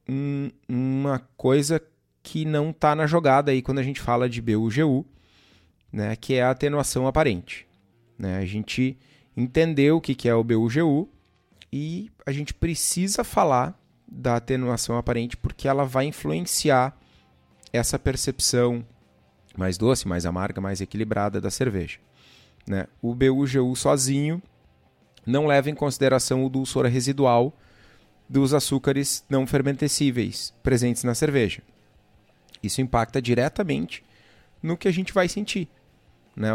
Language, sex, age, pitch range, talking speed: Portuguese, male, 30-49, 110-135 Hz, 130 wpm